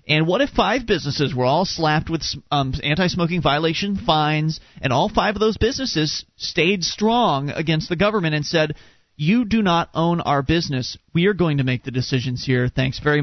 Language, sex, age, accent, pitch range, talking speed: English, male, 30-49, American, 150-220 Hz, 190 wpm